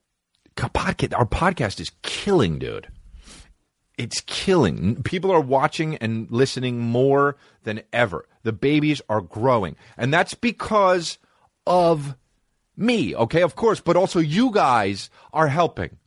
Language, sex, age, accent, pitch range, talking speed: English, male, 30-49, American, 130-200 Hz, 125 wpm